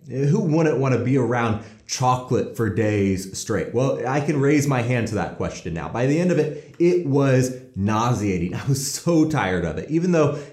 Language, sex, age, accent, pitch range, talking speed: English, male, 30-49, American, 120-155 Hz, 205 wpm